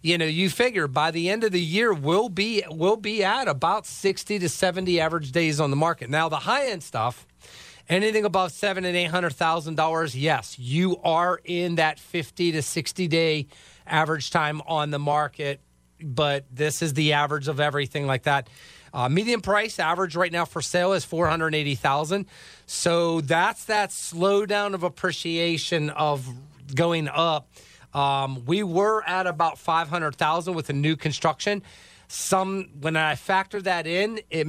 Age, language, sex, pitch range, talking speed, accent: 40-59, English, male, 145-175 Hz, 160 wpm, American